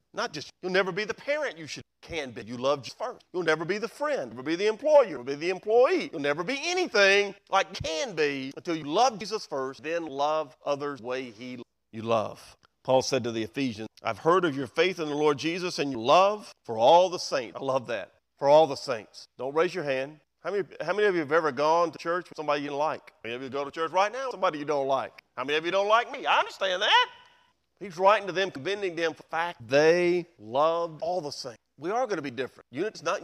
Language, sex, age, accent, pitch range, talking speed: English, male, 40-59, American, 130-180 Hz, 260 wpm